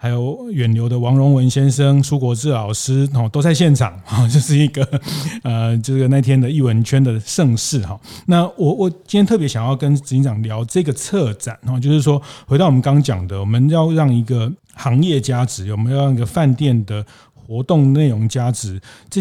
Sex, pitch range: male, 115-145 Hz